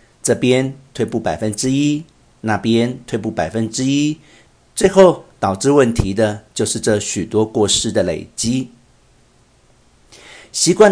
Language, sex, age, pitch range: Chinese, male, 50-69, 105-130 Hz